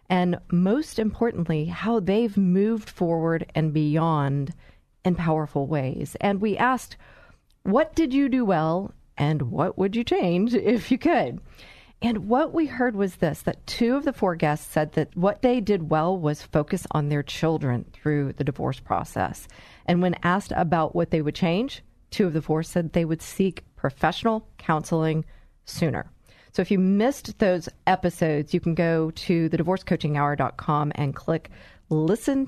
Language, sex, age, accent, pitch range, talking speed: English, female, 40-59, American, 155-220 Hz, 165 wpm